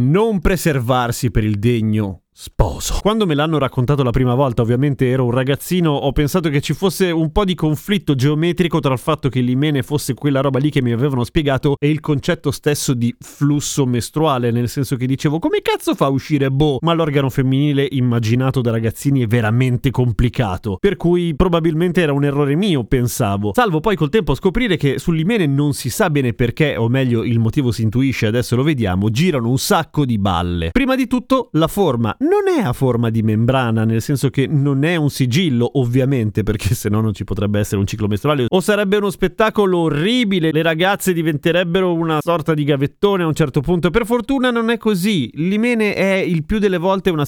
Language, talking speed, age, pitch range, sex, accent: Italian, 200 wpm, 30-49, 130-175 Hz, male, native